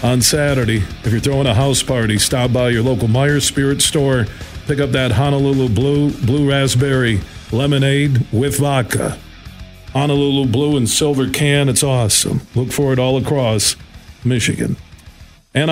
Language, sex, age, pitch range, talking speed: English, male, 50-69, 125-165 Hz, 150 wpm